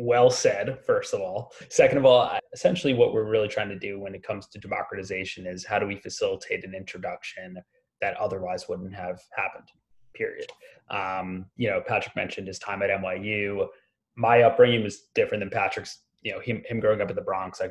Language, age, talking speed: English, 20-39, 195 wpm